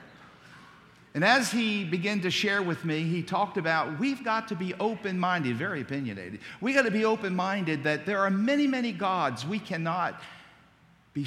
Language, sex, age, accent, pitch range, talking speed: English, male, 50-69, American, 110-150 Hz, 170 wpm